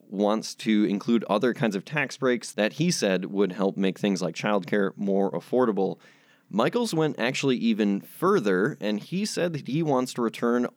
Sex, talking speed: male, 185 wpm